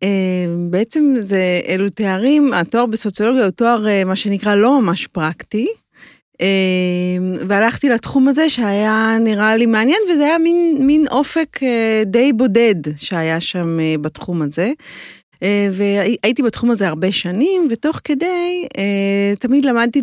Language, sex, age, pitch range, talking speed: Hebrew, female, 40-59, 175-235 Hz, 120 wpm